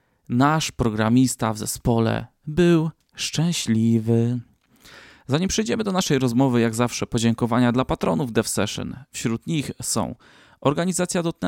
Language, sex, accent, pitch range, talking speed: Polish, male, native, 115-135 Hz, 110 wpm